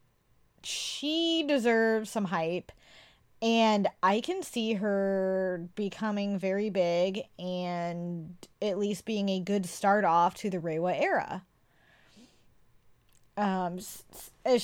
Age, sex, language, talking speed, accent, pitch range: 20-39, female, English, 105 wpm, American, 185-240 Hz